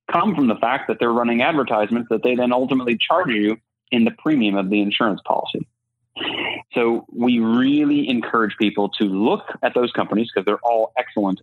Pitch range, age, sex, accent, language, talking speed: 100-125 Hz, 30-49, male, American, English, 185 wpm